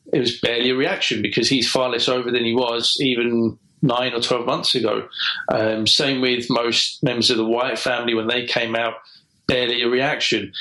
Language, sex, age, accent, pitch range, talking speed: English, male, 40-59, British, 115-135 Hz, 200 wpm